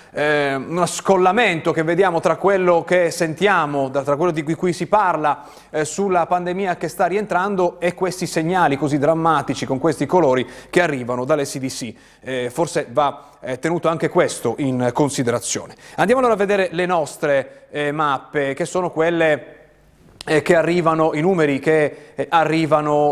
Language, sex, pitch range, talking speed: Italian, male, 135-170 Hz, 150 wpm